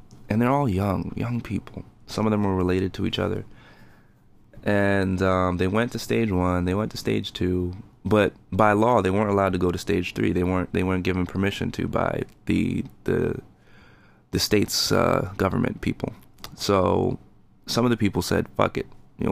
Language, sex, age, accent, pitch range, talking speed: English, male, 20-39, American, 90-105 Hz, 190 wpm